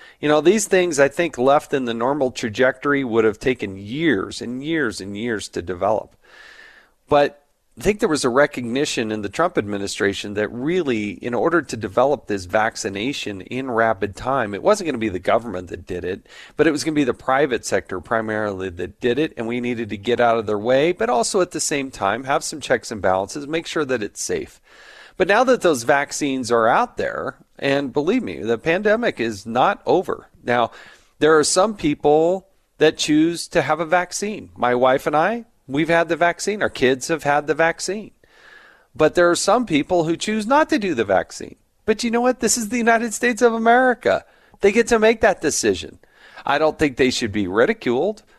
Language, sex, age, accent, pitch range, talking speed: English, male, 40-59, American, 120-190 Hz, 210 wpm